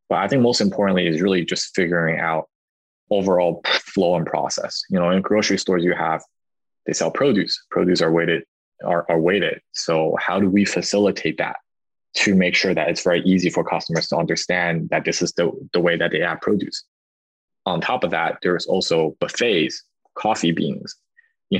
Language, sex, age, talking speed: English, male, 20-39, 185 wpm